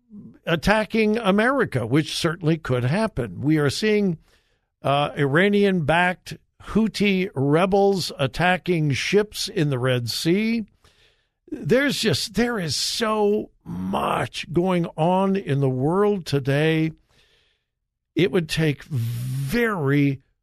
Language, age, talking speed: English, 60-79, 105 wpm